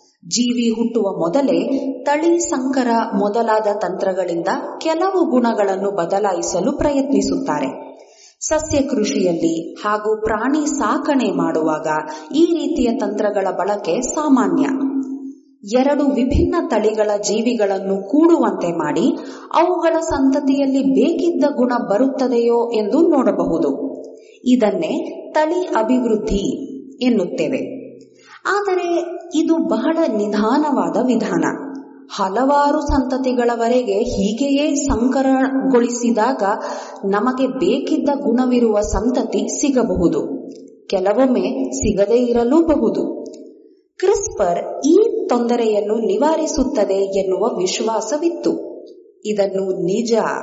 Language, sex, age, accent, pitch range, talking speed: English, female, 30-49, Indian, 215-300 Hz, 80 wpm